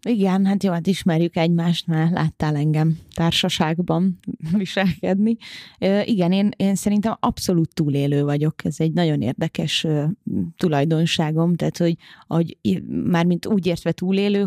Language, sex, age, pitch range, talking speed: Hungarian, female, 30-49, 155-190 Hz, 130 wpm